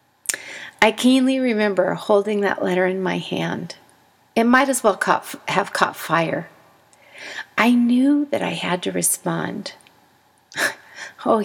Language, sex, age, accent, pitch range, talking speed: English, female, 40-59, American, 180-230 Hz, 125 wpm